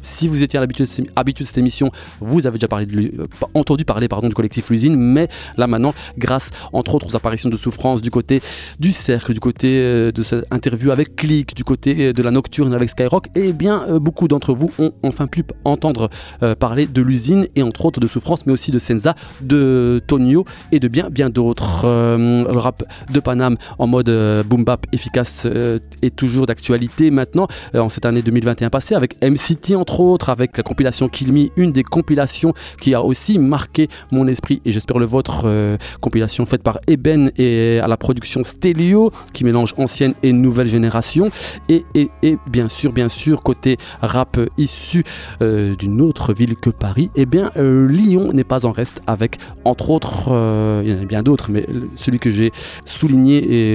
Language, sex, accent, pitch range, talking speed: French, male, French, 115-145 Hz, 190 wpm